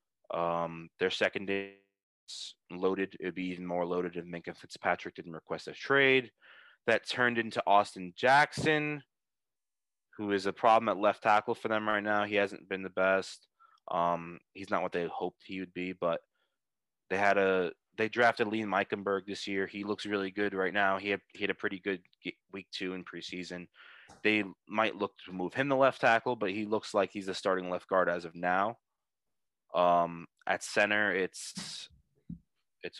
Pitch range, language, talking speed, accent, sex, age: 90-105 Hz, English, 180 wpm, American, male, 20-39